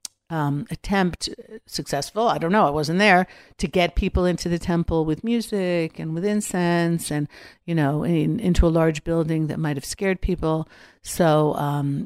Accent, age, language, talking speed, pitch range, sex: American, 50-69, English, 165 wpm, 150-180 Hz, female